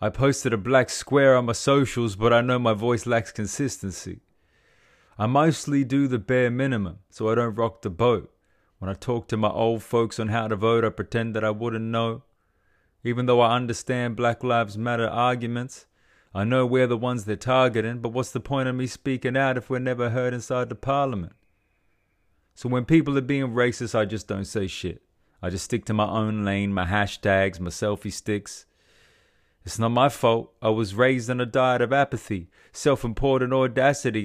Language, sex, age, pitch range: English, male, 30-49, 105-125 Hz